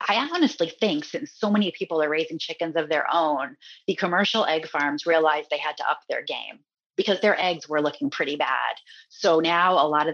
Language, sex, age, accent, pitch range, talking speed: English, female, 30-49, American, 150-210 Hz, 215 wpm